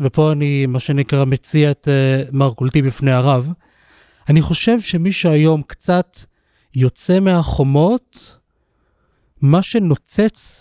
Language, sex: Hebrew, male